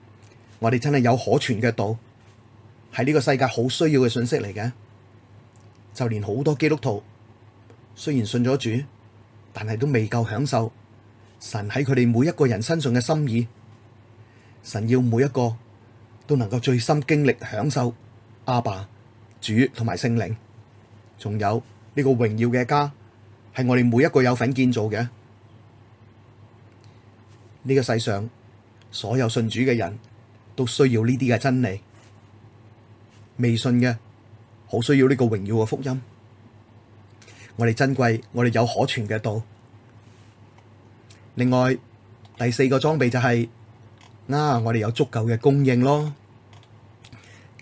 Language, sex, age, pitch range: Chinese, male, 30-49, 110-125 Hz